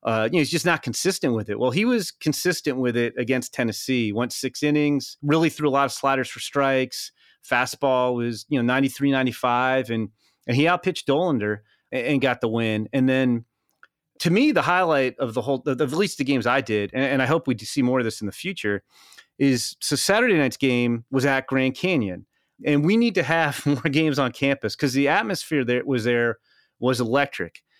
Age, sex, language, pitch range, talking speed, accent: 30-49, male, English, 120-145 Hz, 215 wpm, American